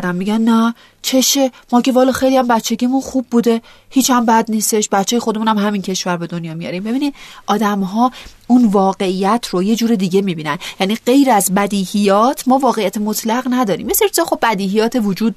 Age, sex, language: 30-49, female, Persian